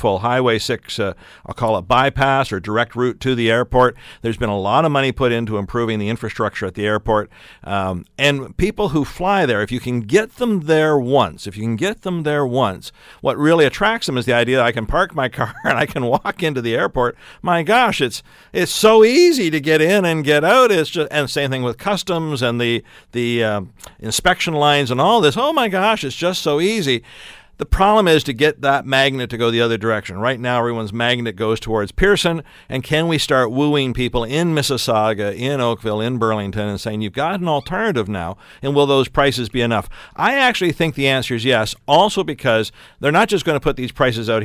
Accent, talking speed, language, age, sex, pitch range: American, 215 wpm, English, 50-69, male, 115-155 Hz